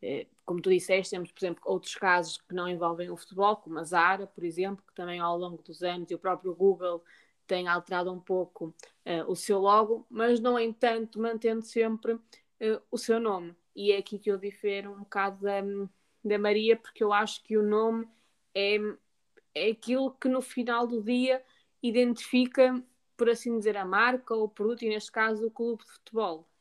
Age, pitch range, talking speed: 20-39, 180-225 Hz, 190 wpm